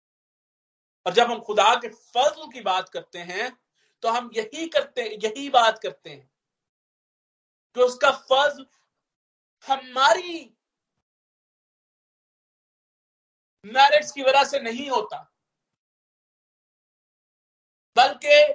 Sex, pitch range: male, 200-285 Hz